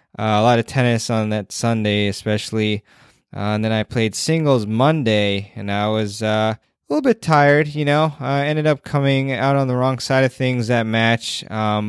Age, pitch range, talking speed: 20-39, 105-125 Hz, 205 wpm